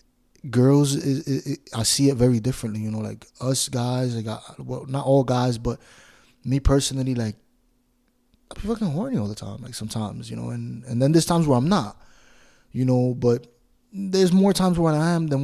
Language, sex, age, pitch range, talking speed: English, male, 20-39, 115-145 Hz, 200 wpm